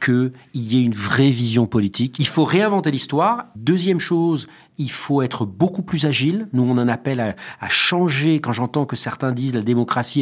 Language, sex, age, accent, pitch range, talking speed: French, male, 40-59, French, 115-150 Hz, 200 wpm